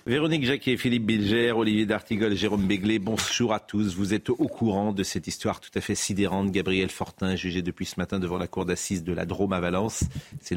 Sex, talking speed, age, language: male, 220 wpm, 40-59, French